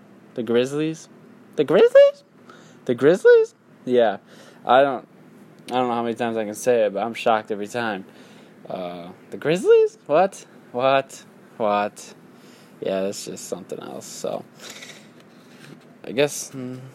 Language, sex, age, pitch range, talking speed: English, male, 10-29, 110-130 Hz, 135 wpm